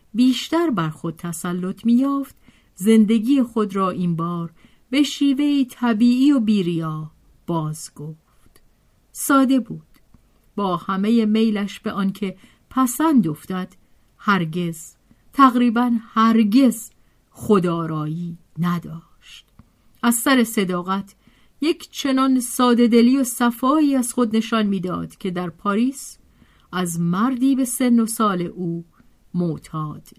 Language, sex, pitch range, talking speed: Persian, female, 175-240 Hz, 110 wpm